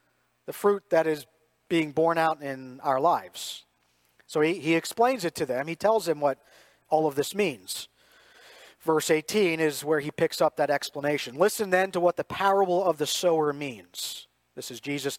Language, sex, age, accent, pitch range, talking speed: English, male, 40-59, American, 145-190 Hz, 185 wpm